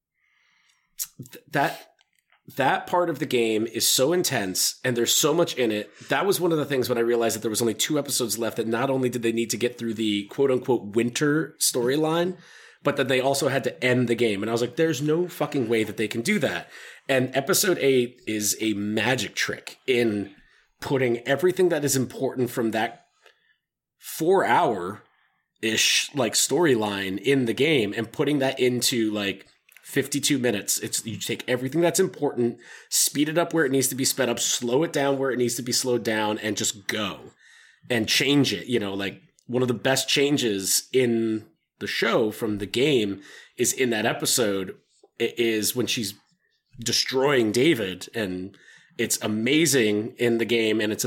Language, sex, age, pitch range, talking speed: English, male, 30-49, 110-135 Hz, 185 wpm